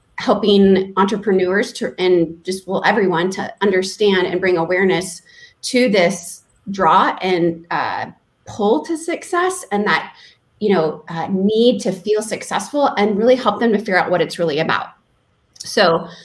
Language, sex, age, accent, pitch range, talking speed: English, female, 30-49, American, 185-255 Hz, 150 wpm